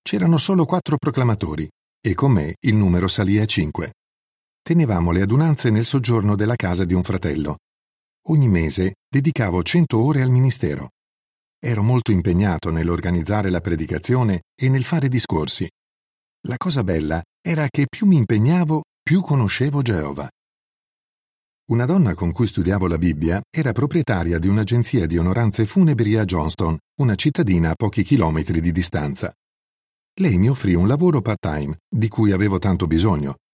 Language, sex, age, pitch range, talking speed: Italian, male, 50-69, 90-135 Hz, 150 wpm